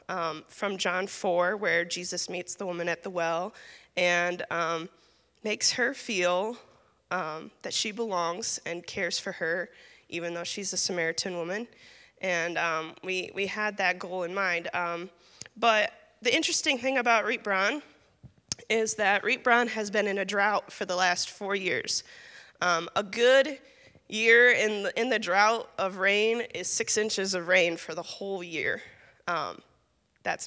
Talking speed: 160 wpm